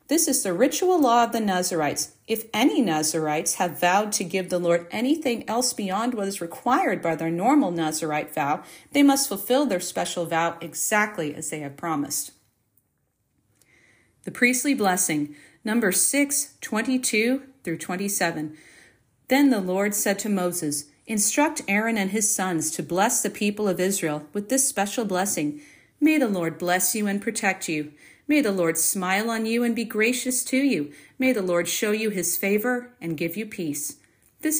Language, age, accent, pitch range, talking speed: English, 40-59, American, 170-250 Hz, 170 wpm